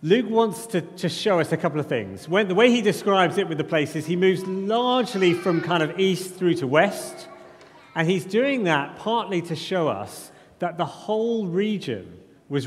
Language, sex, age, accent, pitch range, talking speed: English, male, 40-59, British, 155-195 Hz, 195 wpm